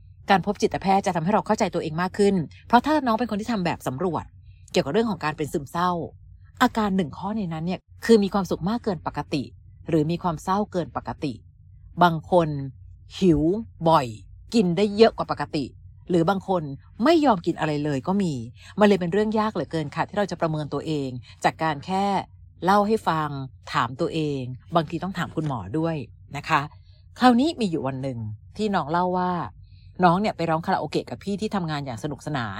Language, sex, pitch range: Thai, female, 135-195 Hz